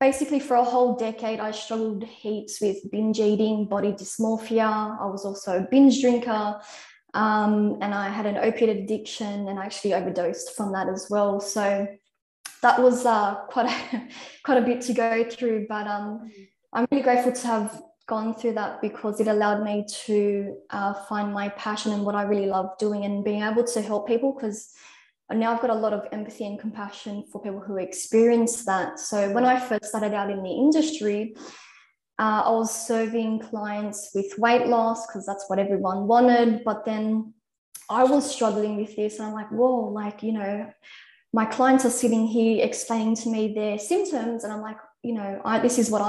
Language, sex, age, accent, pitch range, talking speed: English, female, 10-29, Australian, 205-235 Hz, 190 wpm